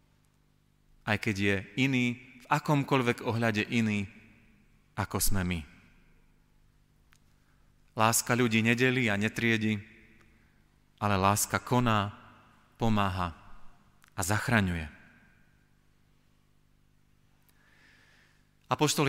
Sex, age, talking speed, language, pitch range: male, 30-49, 70 wpm, Slovak, 105-130 Hz